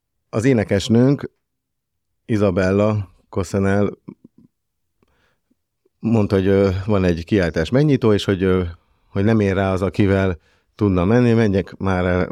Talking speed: 110 wpm